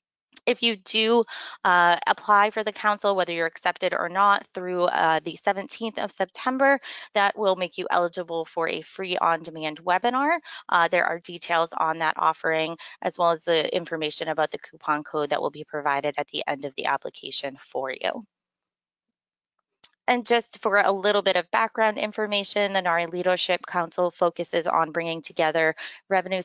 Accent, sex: American, female